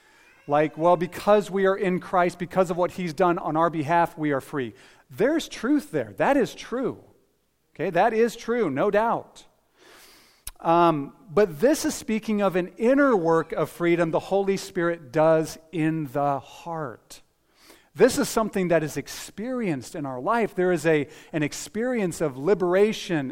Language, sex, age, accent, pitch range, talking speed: English, male, 40-59, American, 150-190 Hz, 165 wpm